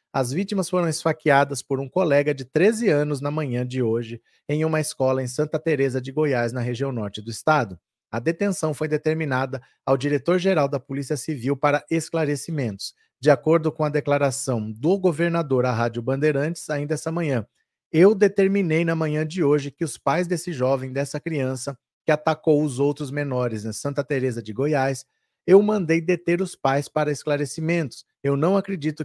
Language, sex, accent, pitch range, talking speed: Portuguese, male, Brazilian, 135-165 Hz, 175 wpm